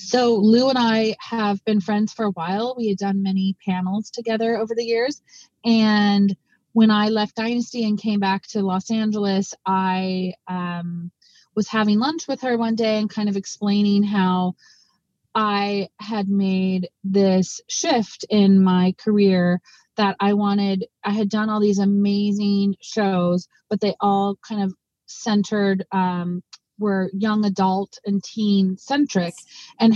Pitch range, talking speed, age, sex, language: 185-215 Hz, 150 wpm, 30-49, female, French